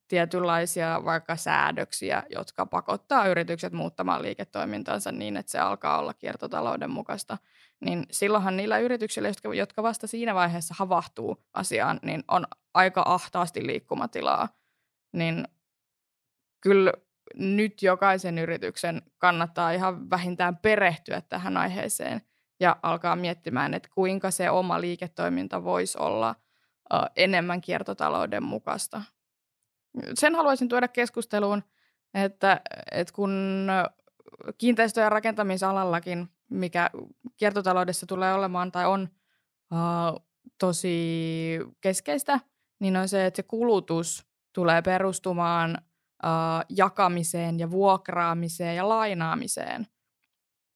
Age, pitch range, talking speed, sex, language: 20-39, 170-200 Hz, 100 wpm, female, Finnish